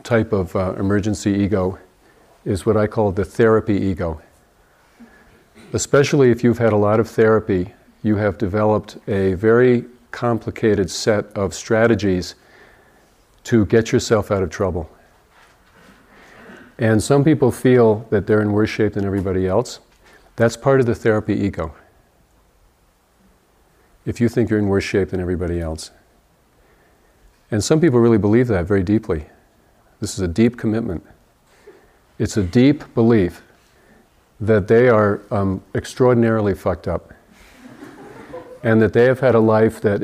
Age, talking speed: 50-69, 140 wpm